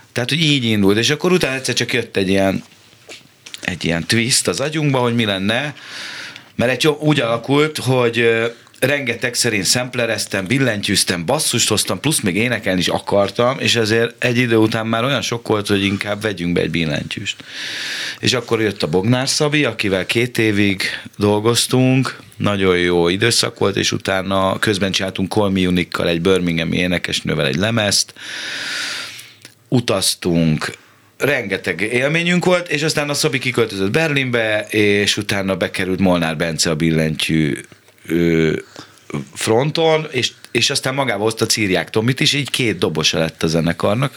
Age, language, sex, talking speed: 30-49, Hungarian, male, 145 wpm